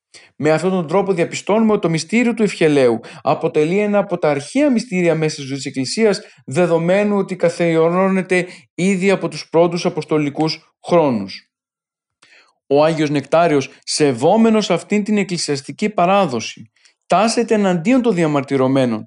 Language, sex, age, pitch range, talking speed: Greek, male, 40-59, 145-185 Hz, 130 wpm